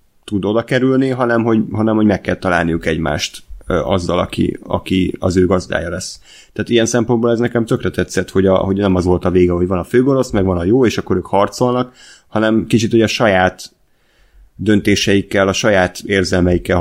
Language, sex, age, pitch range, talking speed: Hungarian, male, 30-49, 90-110 Hz, 195 wpm